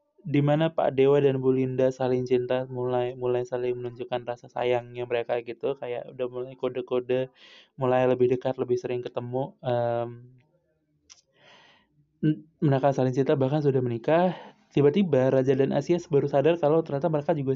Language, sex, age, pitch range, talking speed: Indonesian, male, 20-39, 125-150 Hz, 145 wpm